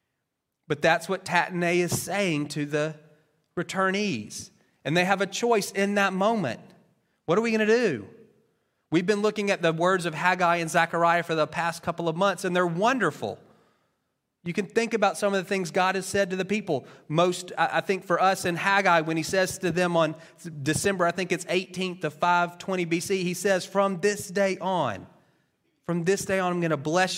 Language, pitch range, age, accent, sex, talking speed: English, 160-195 Hz, 30-49, American, male, 200 wpm